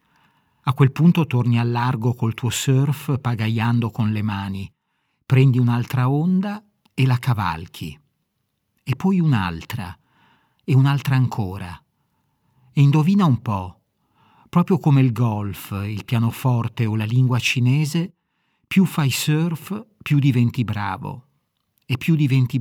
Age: 50-69